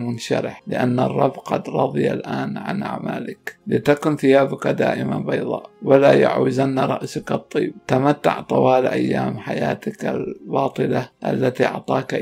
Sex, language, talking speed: male, Arabic, 115 wpm